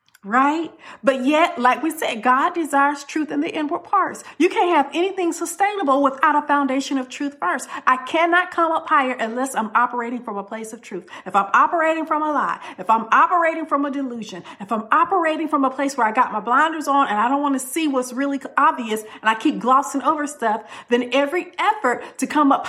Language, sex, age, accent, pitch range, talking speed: English, female, 50-69, American, 225-305 Hz, 215 wpm